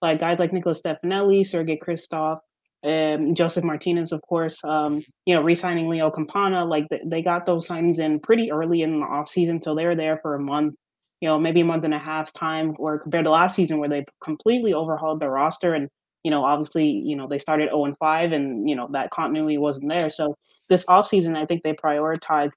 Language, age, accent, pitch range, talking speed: English, 20-39, American, 150-170 Hz, 215 wpm